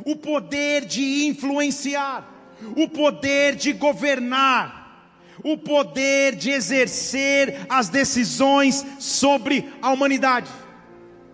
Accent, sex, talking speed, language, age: Brazilian, male, 90 wpm, Portuguese, 40-59